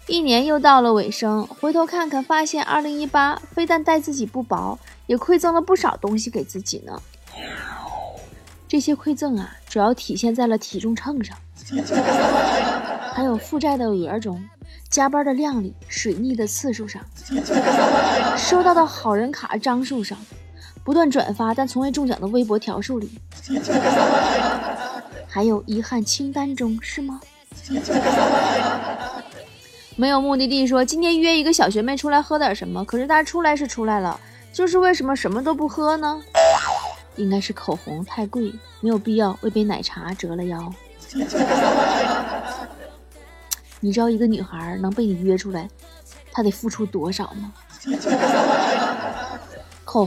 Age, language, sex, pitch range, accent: 20-39, Chinese, female, 205-290 Hz, native